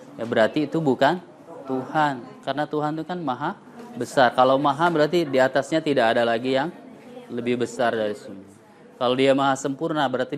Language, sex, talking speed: Indonesian, male, 160 wpm